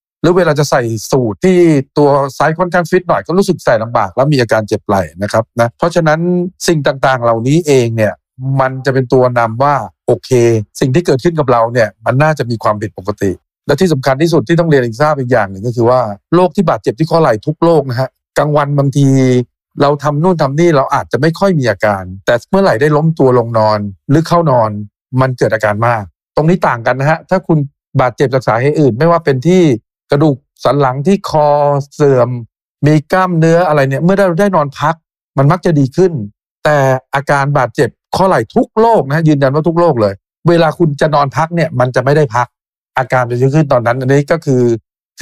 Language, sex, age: Thai, male, 60-79